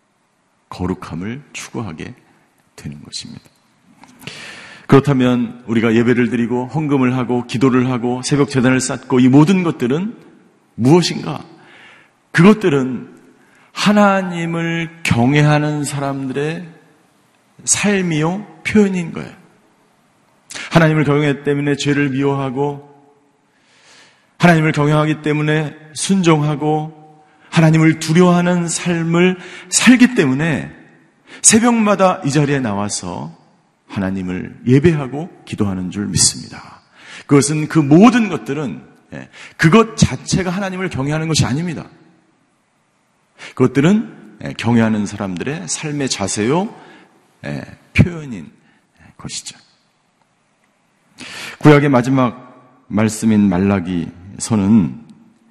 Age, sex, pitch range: 40-59, male, 125-170 Hz